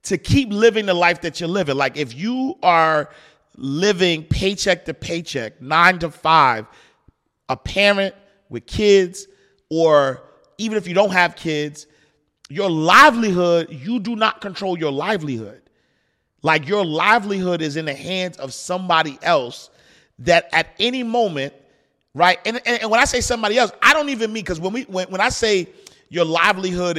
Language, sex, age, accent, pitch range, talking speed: English, male, 40-59, American, 160-225 Hz, 165 wpm